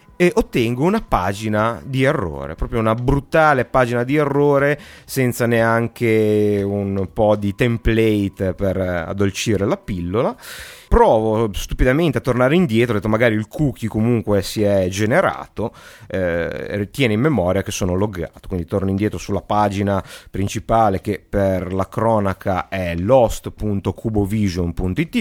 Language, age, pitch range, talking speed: Italian, 30-49, 100-125 Hz, 130 wpm